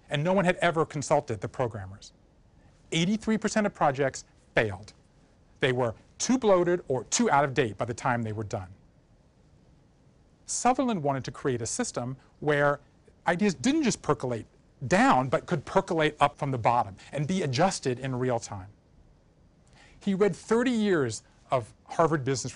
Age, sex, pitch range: 40-59, male, 130-190 Hz